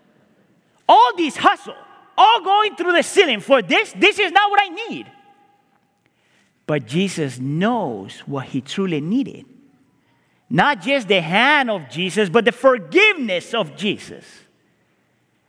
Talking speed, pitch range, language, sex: 130 wpm, 150-250 Hz, English, male